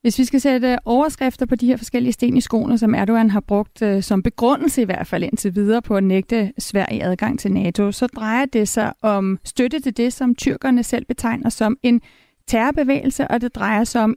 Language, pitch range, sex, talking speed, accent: Danish, 215-260 Hz, female, 215 wpm, native